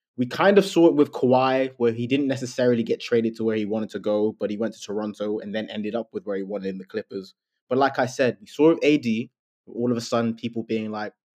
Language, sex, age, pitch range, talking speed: English, male, 20-39, 110-130 Hz, 270 wpm